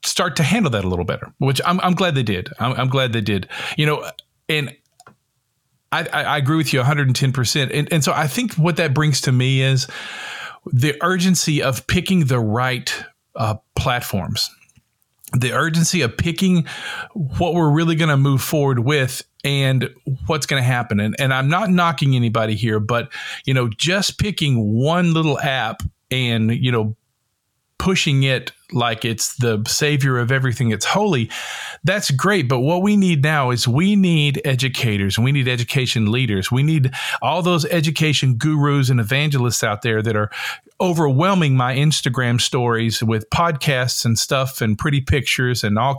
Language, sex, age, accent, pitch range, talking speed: English, male, 40-59, American, 120-155 Hz, 170 wpm